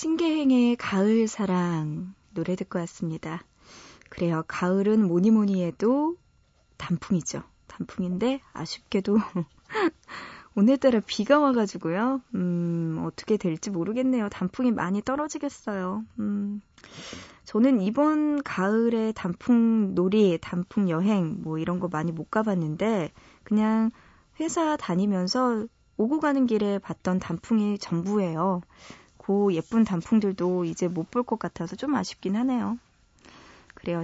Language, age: Korean, 20-39